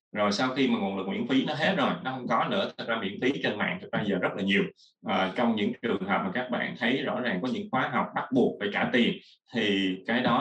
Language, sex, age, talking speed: Vietnamese, male, 20-39, 280 wpm